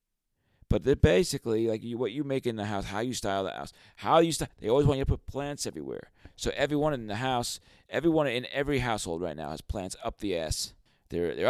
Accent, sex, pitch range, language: American, male, 95-130 Hz, English